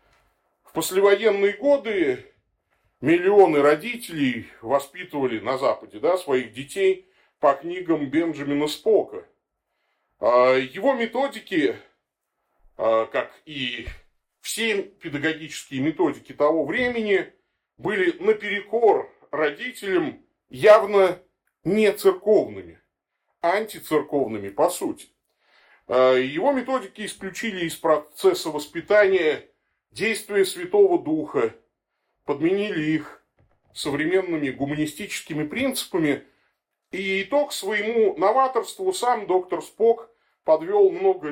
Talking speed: 80 wpm